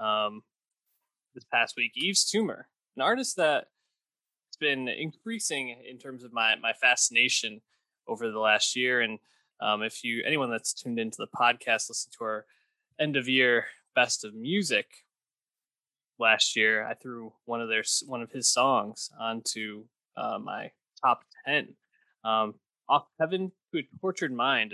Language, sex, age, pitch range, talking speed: English, male, 20-39, 115-170 Hz, 155 wpm